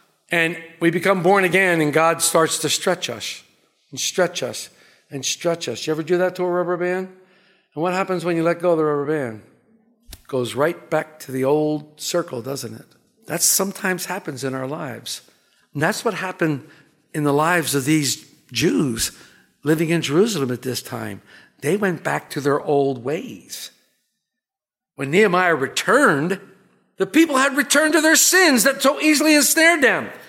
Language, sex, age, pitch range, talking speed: English, male, 60-79, 165-275 Hz, 180 wpm